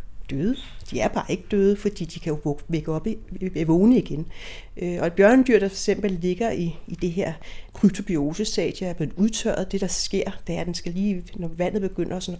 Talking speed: 225 wpm